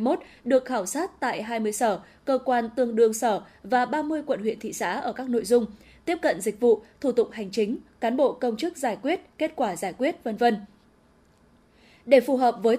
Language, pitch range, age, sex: Vietnamese, 220-275 Hz, 10-29, female